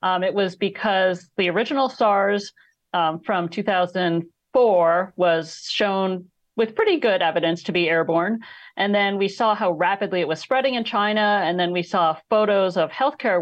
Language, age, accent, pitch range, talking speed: English, 40-59, American, 165-205 Hz, 165 wpm